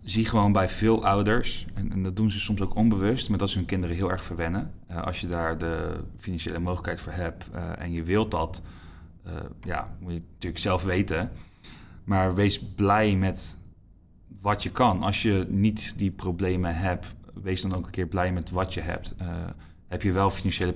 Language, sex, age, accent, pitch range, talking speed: Dutch, male, 30-49, Dutch, 85-100 Hz, 200 wpm